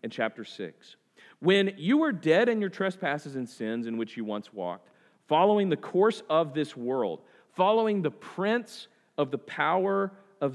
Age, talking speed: 40-59, 170 wpm